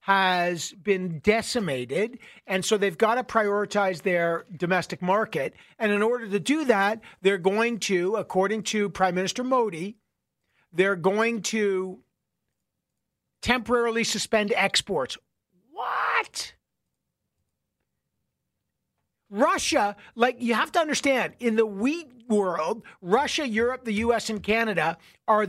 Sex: male